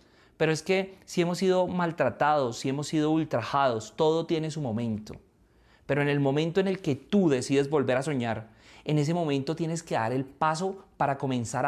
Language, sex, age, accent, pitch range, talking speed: Spanish, male, 30-49, Colombian, 145-185 Hz, 190 wpm